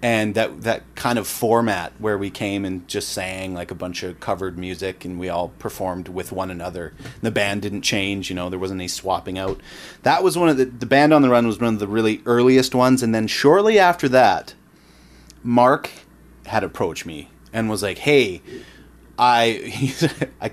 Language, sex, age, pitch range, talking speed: English, male, 30-49, 100-130 Hz, 200 wpm